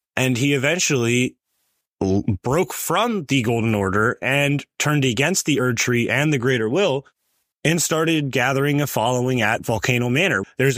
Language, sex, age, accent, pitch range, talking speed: English, male, 20-39, American, 115-145 Hz, 150 wpm